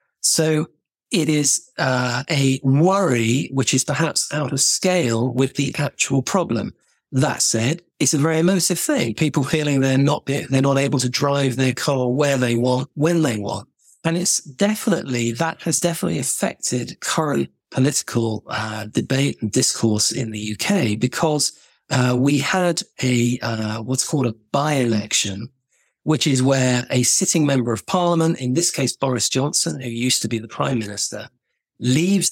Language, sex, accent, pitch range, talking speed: English, male, British, 120-155 Hz, 165 wpm